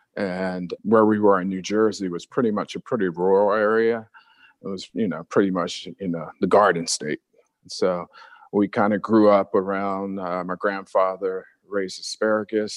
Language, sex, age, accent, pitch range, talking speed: English, male, 40-59, American, 95-110 Hz, 180 wpm